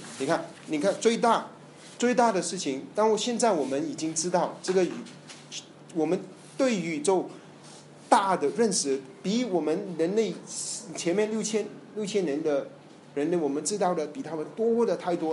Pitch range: 150-200 Hz